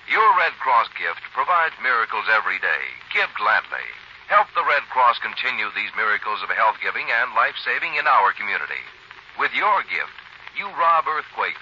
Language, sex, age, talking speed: English, male, 60-79, 155 wpm